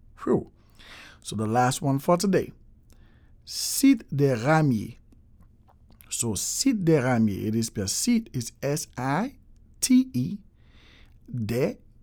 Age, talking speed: 60-79, 120 wpm